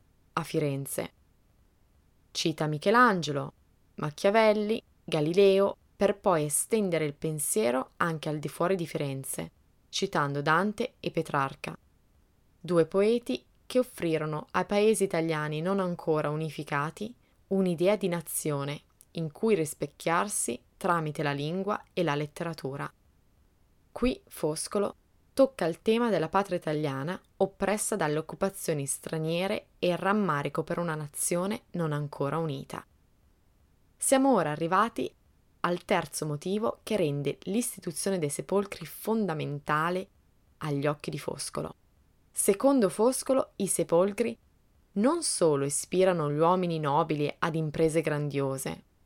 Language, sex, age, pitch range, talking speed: Italian, female, 20-39, 150-195 Hz, 115 wpm